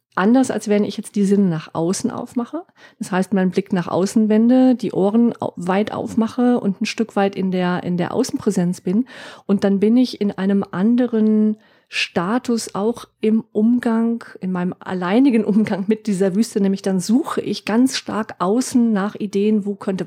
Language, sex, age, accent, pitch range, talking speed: German, female, 40-59, German, 195-225 Hz, 180 wpm